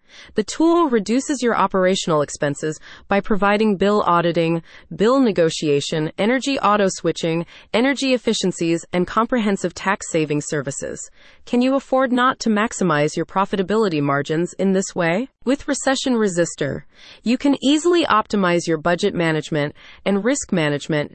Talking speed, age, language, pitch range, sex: 135 wpm, 30-49, English, 165-220 Hz, female